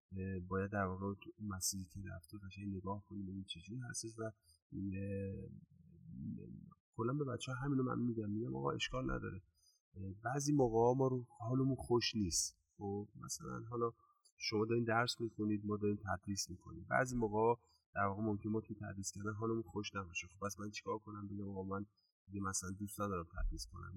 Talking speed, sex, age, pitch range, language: 165 wpm, male, 30-49, 95-125 Hz, Persian